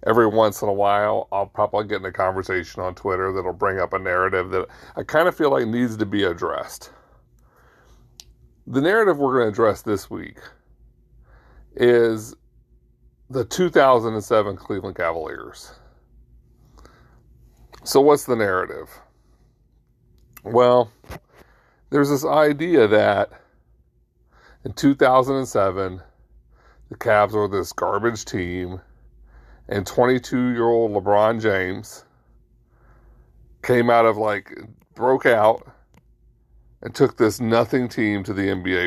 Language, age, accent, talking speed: English, 40-59, American, 115 wpm